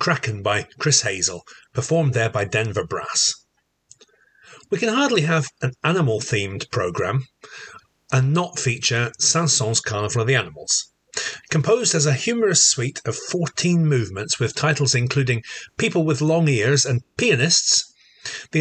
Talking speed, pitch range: 135 wpm, 115-155 Hz